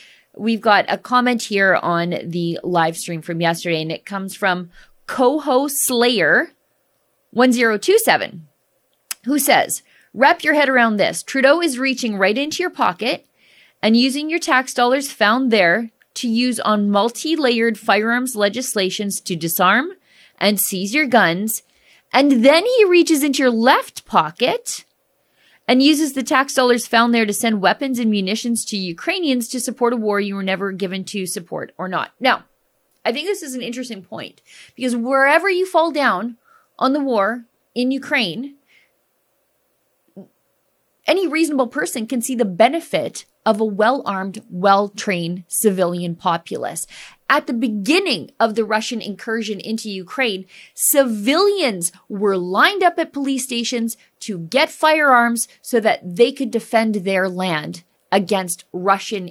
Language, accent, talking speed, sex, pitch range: English, American, 145 wpm, female, 200-270 Hz